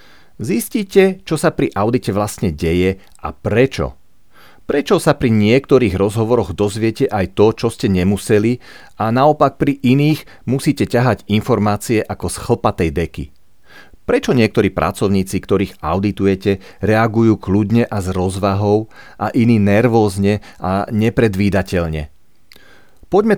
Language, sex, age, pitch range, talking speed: Slovak, male, 40-59, 90-120 Hz, 120 wpm